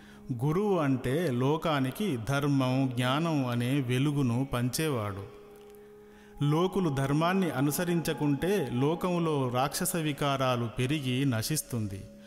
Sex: male